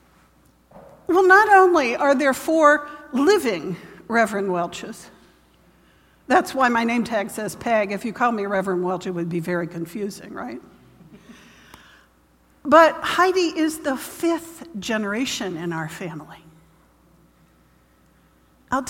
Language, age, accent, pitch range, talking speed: English, 60-79, American, 170-270 Hz, 120 wpm